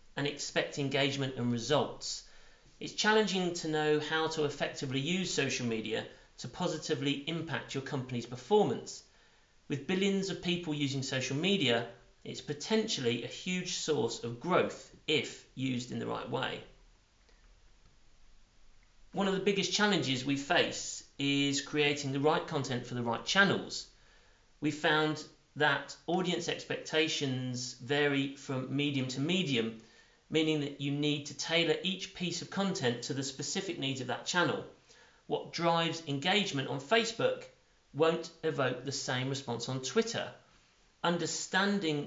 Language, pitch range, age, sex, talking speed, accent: English, 135-170 Hz, 40-59, male, 140 wpm, British